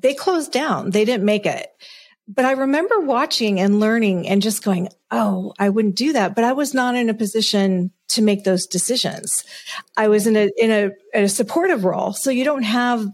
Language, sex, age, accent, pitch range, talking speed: English, female, 40-59, American, 200-245 Hz, 205 wpm